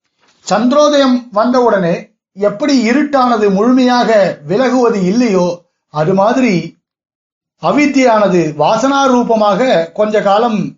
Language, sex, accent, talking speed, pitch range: Tamil, male, native, 80 wpm, 190-245 Hz